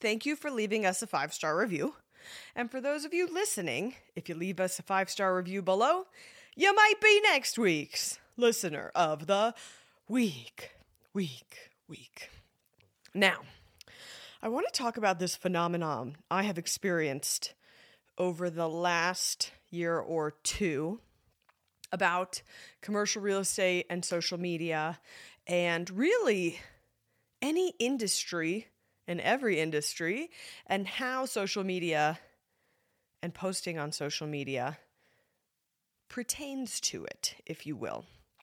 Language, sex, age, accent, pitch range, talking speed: English, female, 20-39, American, 170-220 Hz, 125 wpm